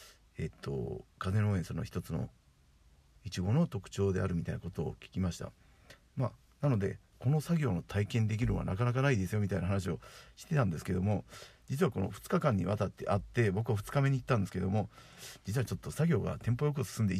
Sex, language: male, Japanese